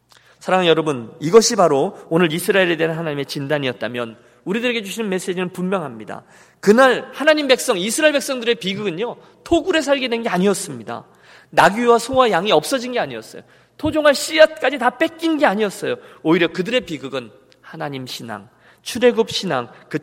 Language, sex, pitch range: Korean, male, 170-260 Hz